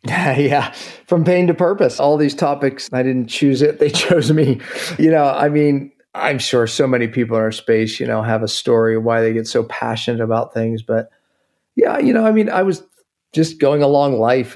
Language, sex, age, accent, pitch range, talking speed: English, male, 40-59, American, 120-145 Hz, 215 wpm